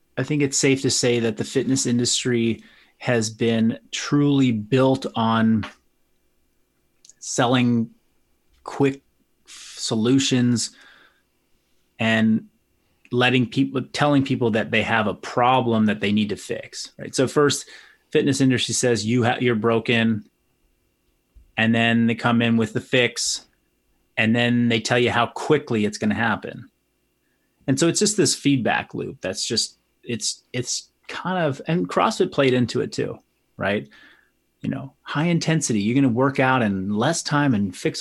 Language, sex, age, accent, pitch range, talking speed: English, male, 30-49, American, 110-135 Hz, 155 wpm